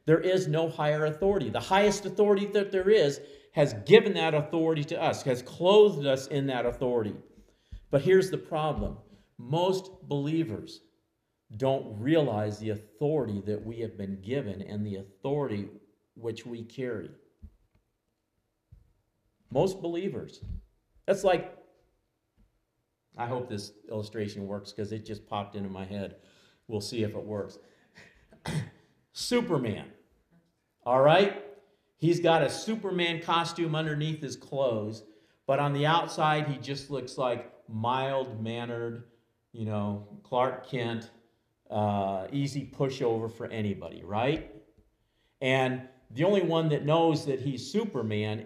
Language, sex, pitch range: English, male, 110-160 Hz